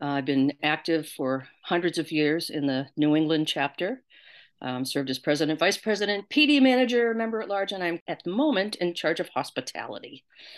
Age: 50-69